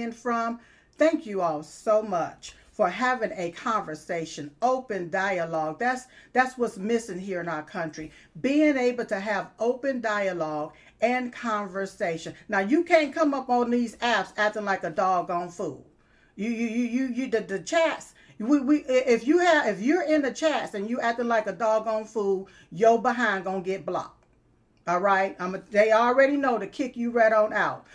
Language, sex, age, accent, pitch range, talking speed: English, female, 50-69, American, 185-250 Hz, 180 wpm